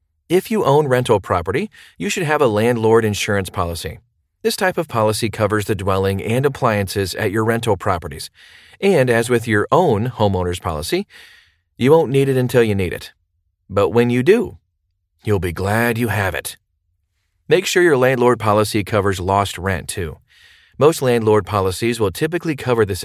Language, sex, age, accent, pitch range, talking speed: English, male, 40-59, American, 95-120 Hz, 170 wpm